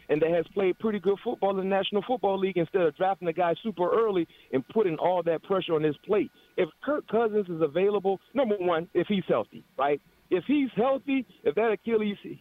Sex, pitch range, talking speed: male, 165-220 Hz, 215 wpm